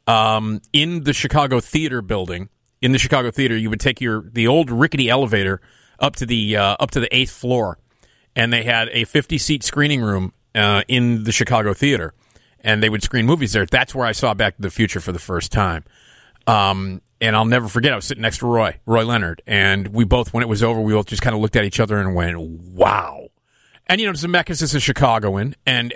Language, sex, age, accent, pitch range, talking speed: English, male, 40-59, American, 105-130 Hz, 225 wpm